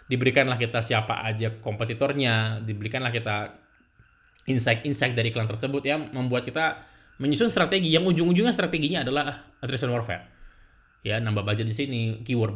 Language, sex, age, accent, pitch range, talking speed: Indonesian, male, 20-39, native, 105-130 Hz, 135 wpm